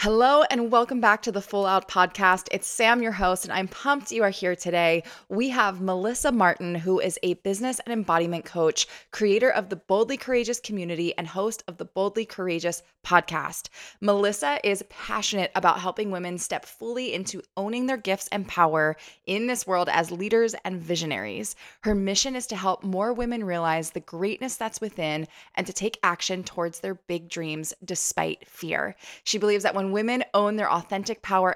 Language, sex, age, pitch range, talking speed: English, female, 20-39, 175-220 Hz, 185 wpm